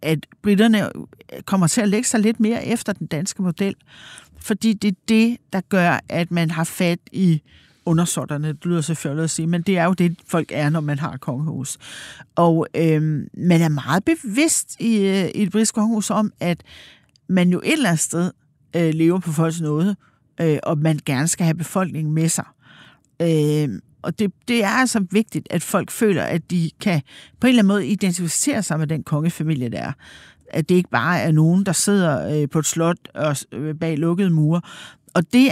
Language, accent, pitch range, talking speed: Danish, native, 160-205 Hz, 200 wpm